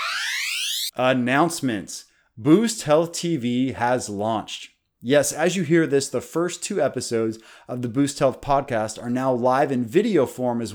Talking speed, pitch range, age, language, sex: 150 wpm, 115-150 Hz, 30-49, English, male